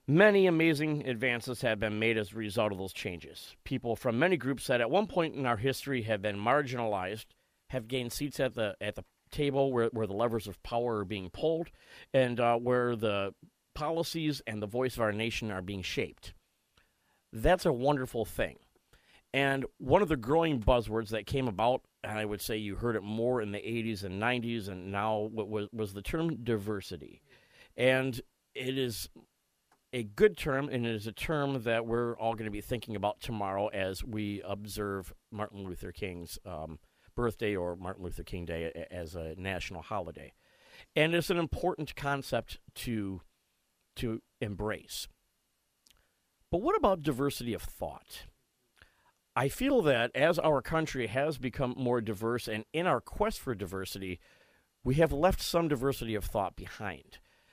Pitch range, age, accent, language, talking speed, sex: 105-135 Hz, 40-59, American, English, 175 wpm, male